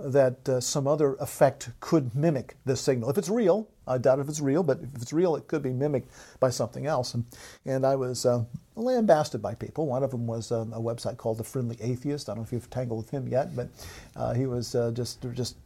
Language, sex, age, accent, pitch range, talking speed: English, male, 50-69, American, 115-140 Hz, 240 wpm